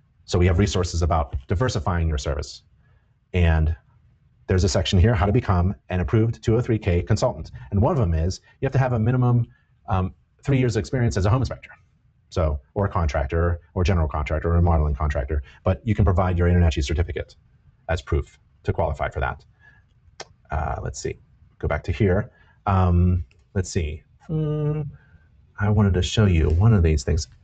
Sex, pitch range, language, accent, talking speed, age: male, 85-115 Hz, English, American, 185 wpm, 30-49